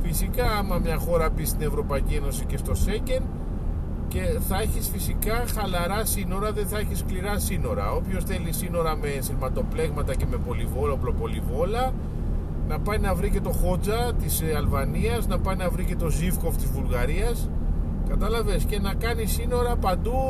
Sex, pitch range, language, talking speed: male, 75-80 Hz, Greek, 160 wpm